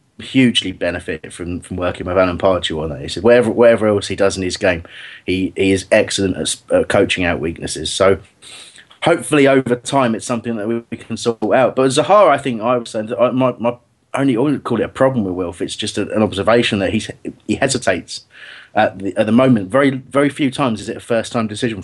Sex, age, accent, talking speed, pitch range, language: male, 30-49, British, 230 wpm, 105-130 Hz, English